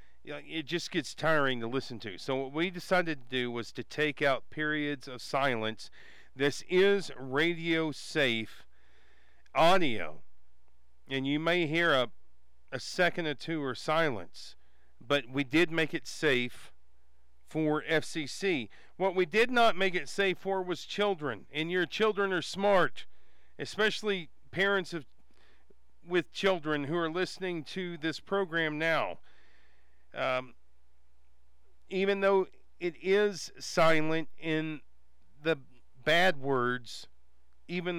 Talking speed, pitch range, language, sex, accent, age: 130 wpm, 120-170 Hz, English, male, American, 40-59